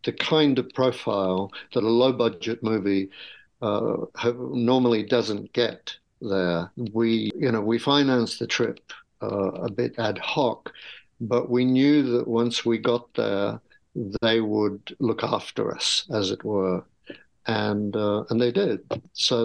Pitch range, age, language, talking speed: 105-125 Hz, 60-79, English, 150 wpm